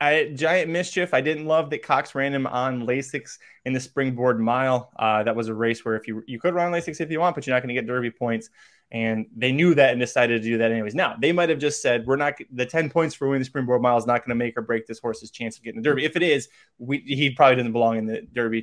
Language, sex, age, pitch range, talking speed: English, male, 20-39, 120-150 Hz, 285 wpm